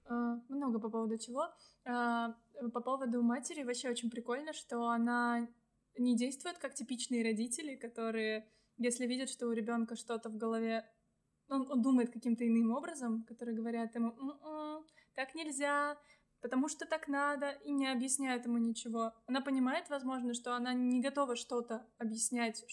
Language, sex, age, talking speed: Russian, female, 20-39, 145 wpm